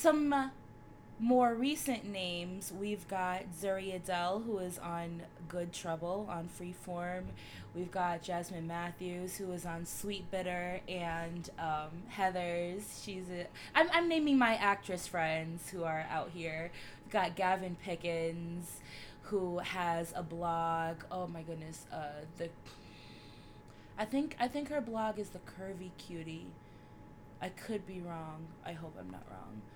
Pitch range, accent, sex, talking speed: 170-215 Hz, American, female, 145 wpm